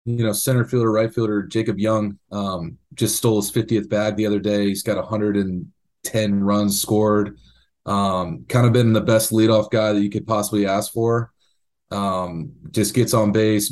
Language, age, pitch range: English, 30-49, 100-110 Hz